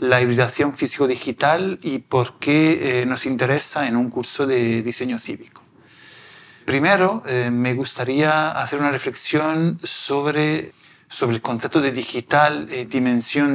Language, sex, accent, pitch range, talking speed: Spanish, male, Argentinian, 125-150 Hz, 135 wpm